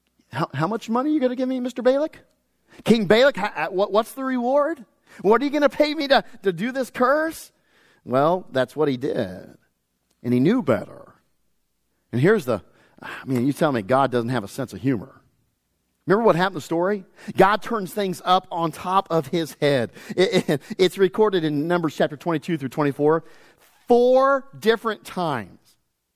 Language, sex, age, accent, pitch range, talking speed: English, male, 40-59, American, 160-235 Hz, 180 wpm